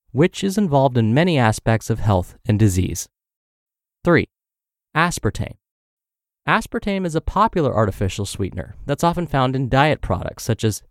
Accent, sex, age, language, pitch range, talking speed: American, male, 30-49, English, 110-165 Hz, 145 wpm